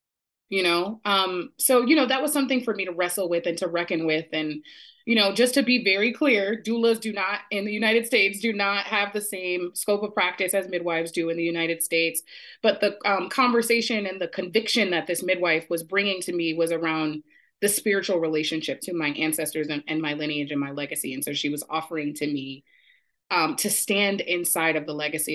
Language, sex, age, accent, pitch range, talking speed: English, female, 20-39, American, 155-205 Hz, 215 wpm